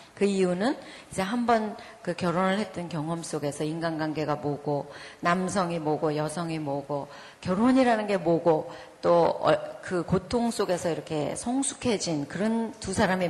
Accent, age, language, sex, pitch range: native, 40-59, Korean, female, 165-230 Hz